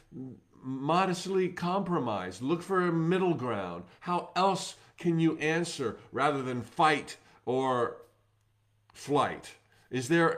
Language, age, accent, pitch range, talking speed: English, 50-69, American, 115-165 Hz, 110 wpm